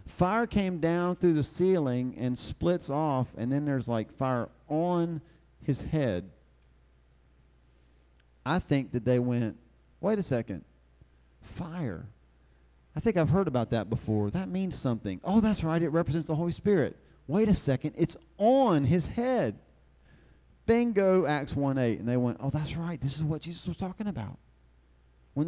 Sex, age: male, 40-59